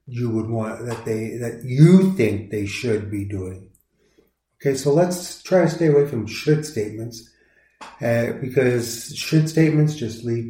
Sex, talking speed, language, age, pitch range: male, 160 wpm, English, 40-59, 110-150 Hz